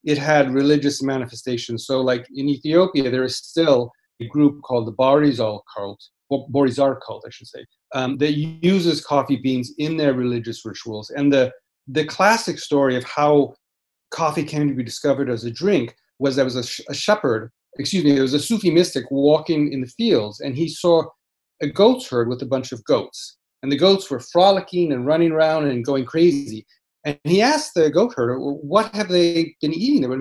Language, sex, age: English, male, 40-59